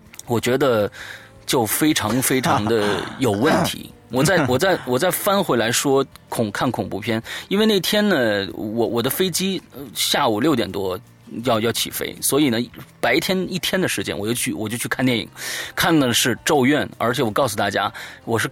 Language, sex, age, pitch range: Chinese, male, 30-49, 110-160 Hz